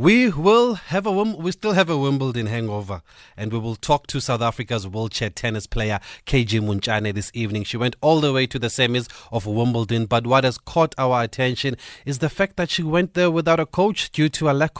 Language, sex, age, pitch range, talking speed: English, male, 30-49, 110-140 Hz, 220 wpm